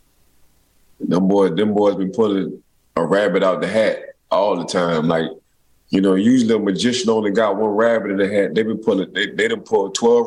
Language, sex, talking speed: English, male, 205 wpm